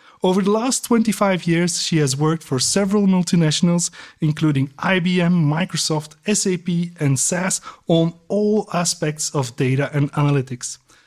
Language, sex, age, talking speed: English, male, 30-49, 130 wpm